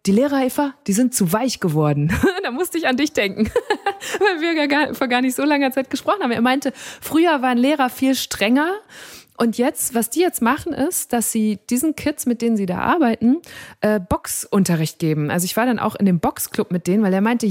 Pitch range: 200-260 Hz